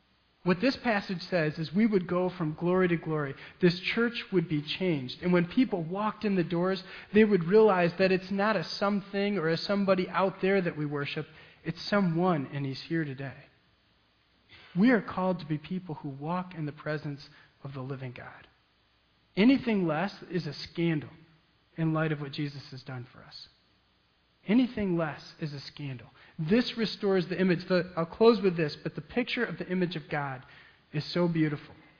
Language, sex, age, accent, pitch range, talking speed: English, male, 40-59, American, 150-190 Hz, 185 wpm